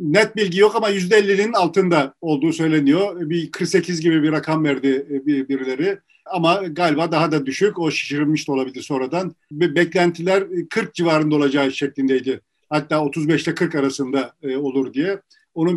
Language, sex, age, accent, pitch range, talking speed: Turkish, male, 50-69, native, 150-190 Hz, 150 wpm